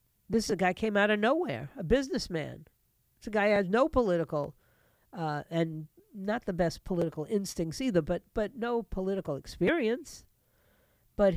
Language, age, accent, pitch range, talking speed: English, 50-69, American, 150-215 Hz, 165 wpm